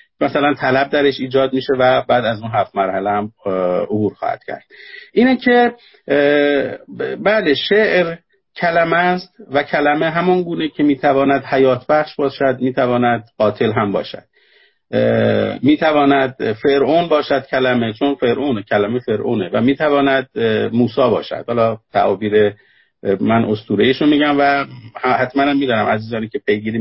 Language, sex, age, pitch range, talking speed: Persian, male, 50-69, 125-155 Hz, 130 wpm